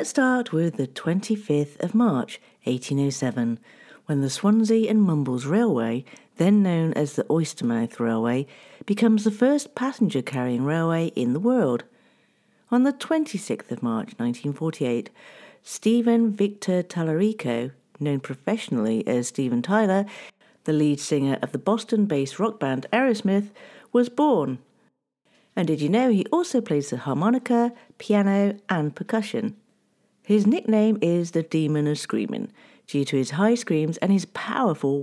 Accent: British